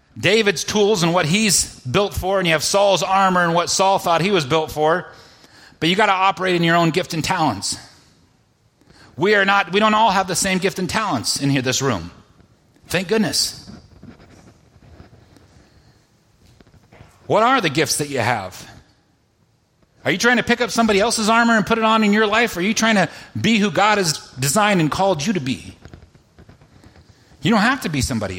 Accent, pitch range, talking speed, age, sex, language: American, 120-195 Hz, 195 wpm, 30-49, male, English